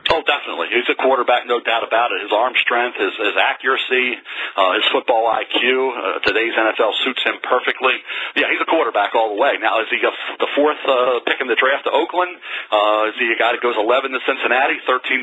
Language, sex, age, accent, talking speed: English, male, 40-59, American, 220 wpm